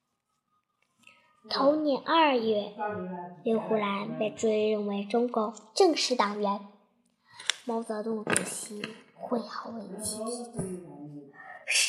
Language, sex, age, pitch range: Chinese, male, 10-29, 205-275 Hz